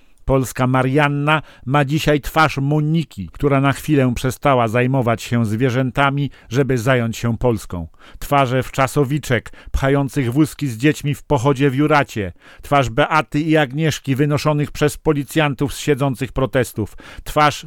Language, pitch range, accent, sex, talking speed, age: German, 125-150 Hz, Polish, male, 130 wpm, 50-69